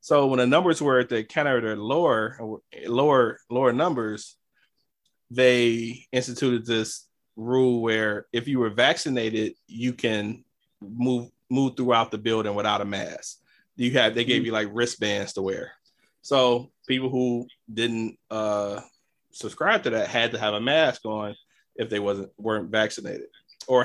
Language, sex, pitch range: English, male, 110-130 Hz